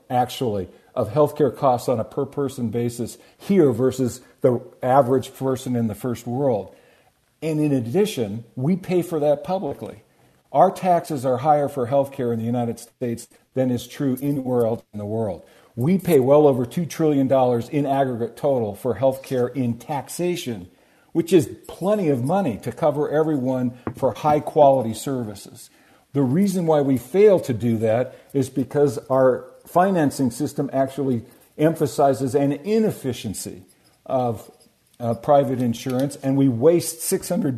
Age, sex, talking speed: 50-69, male, 155 wpm